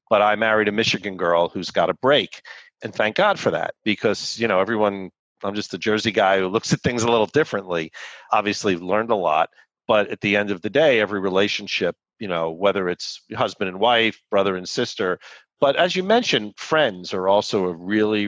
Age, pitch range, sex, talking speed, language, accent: 40-59, 95-115 Hz, male, 205 wpm, English, American